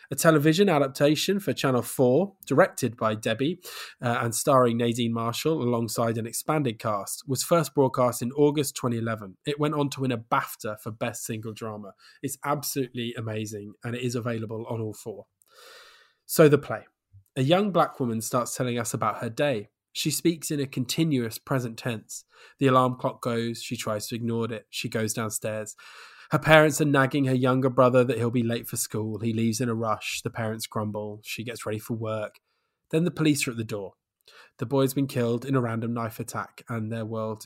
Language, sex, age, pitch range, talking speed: English, male, 20-39, 115-135 Hz, 195 wpm